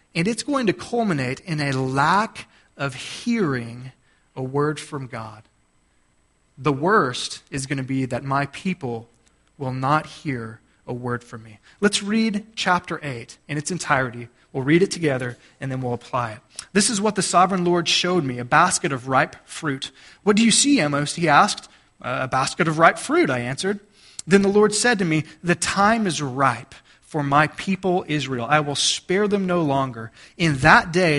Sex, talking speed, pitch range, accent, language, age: male, 185 wpm, 135-185 Hz, American, English, 30-49